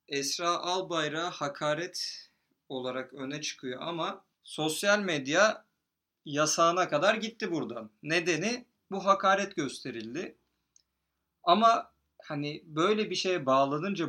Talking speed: 100 wpm